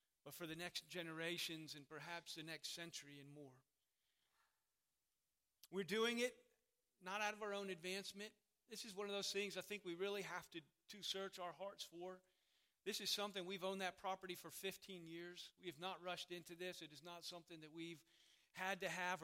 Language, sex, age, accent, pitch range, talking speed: English, male, 40-59, American, 160-185 Hz, 195 wpm